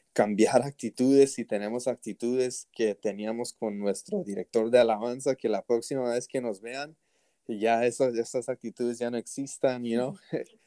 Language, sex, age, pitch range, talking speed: Spanish, male, 20-39, 110-135 Hz, 170 wpm